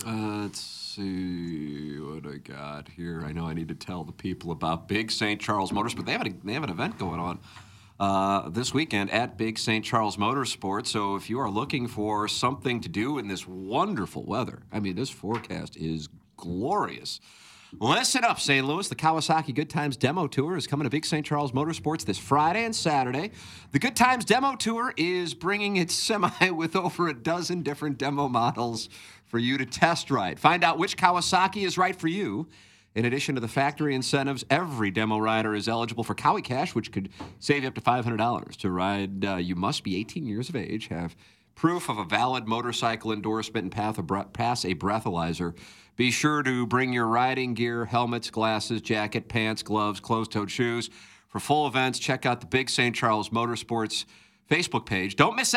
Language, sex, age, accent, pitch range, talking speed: English, male, 50-69, American, 105-150 Hz, 190 wpm